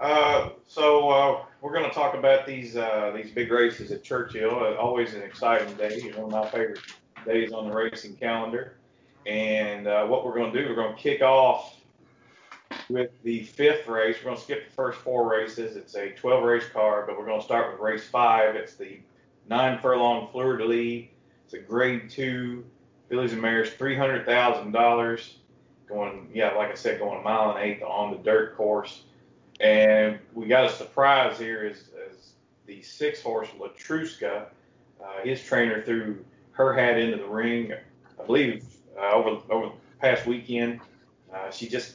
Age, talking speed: 30-49, 185 wpm